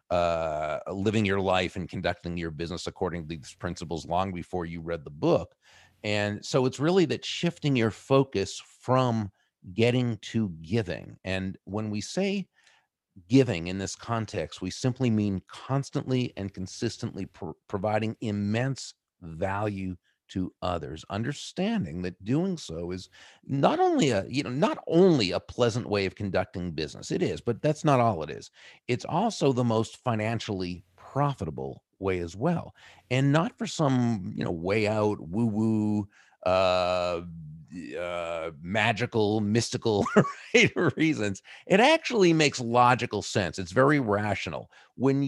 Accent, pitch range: American, 95-130 Hz